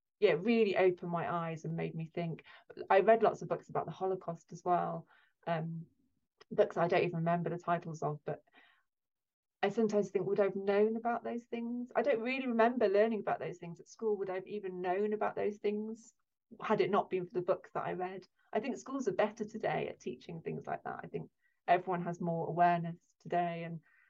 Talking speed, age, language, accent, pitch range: 215 wpm, 30-49, English, British, 170-205 Hz